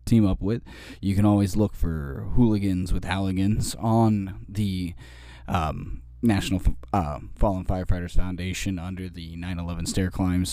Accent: American